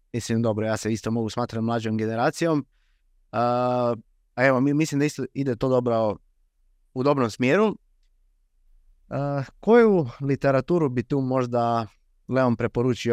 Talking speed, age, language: 135 wpm, 20-39, Croatian